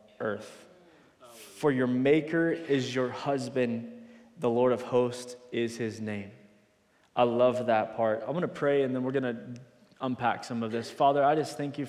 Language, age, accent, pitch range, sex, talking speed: English, 20-39, American, 115-135 Hz, male, 180 wpm